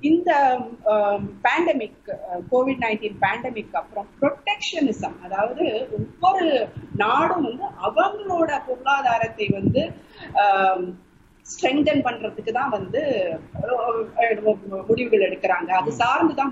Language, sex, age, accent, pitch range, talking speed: Tamil, female, 30-49, native, 215-310 Hz, 85 wpm